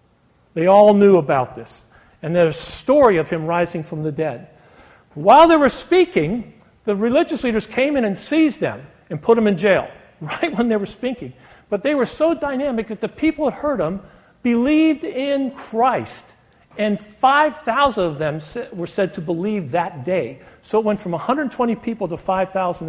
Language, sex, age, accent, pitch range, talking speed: English, male, 50-69, American, 155-225 Hz, 180 wpm